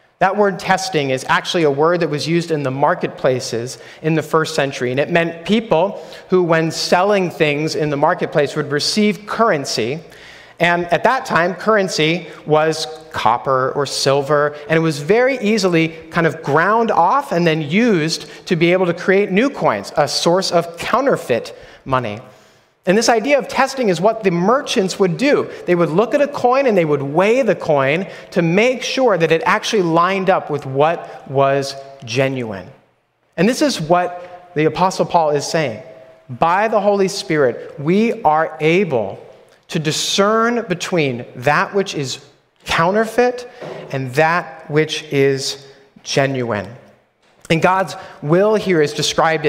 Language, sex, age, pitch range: English, male, 30-49, 150-195 Hz